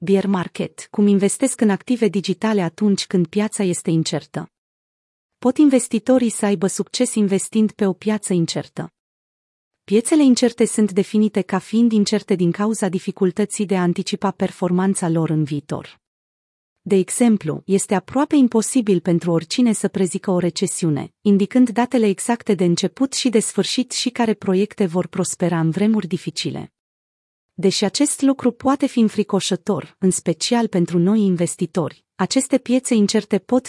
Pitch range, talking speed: 180-225 Hz, 145 wpm